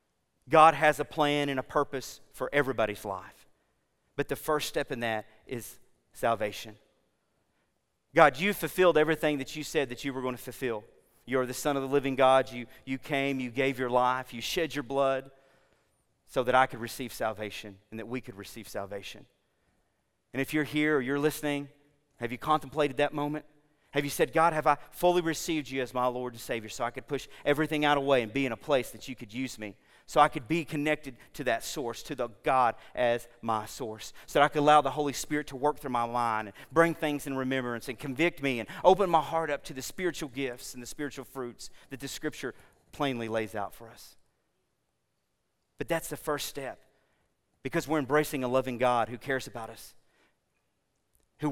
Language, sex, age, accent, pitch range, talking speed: English, male, 40-59, American, 120-150 Hz, 205 wpm